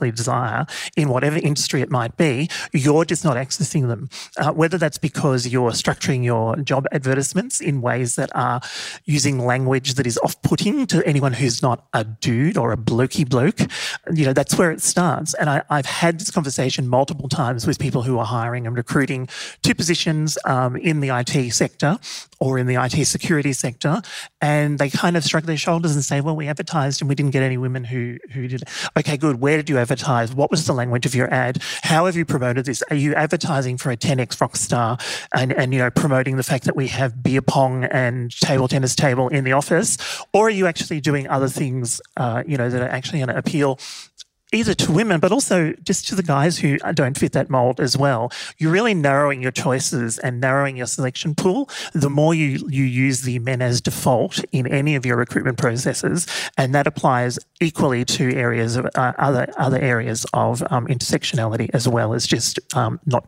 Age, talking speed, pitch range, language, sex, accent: 30-49, 205 wpm, 125-155 Hz, English, male, Australian